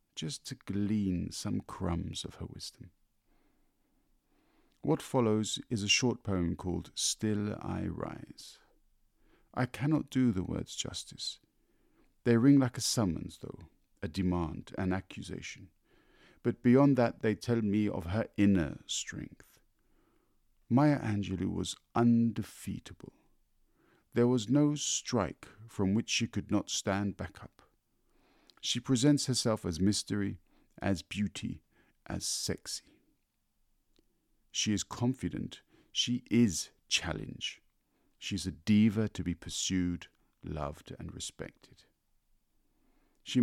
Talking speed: 115 wpm